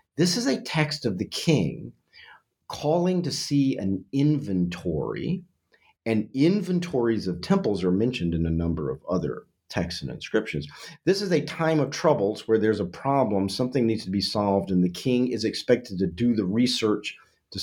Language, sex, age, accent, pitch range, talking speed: English, male, 50-69, American, 95-145 Hz, 175 wpm